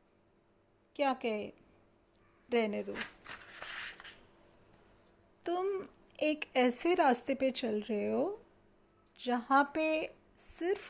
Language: English